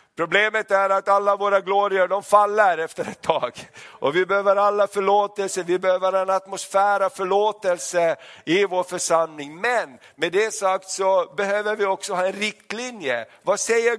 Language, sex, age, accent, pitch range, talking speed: Swedish, male, 50-69, native, 175-200 Hz, 165 wpm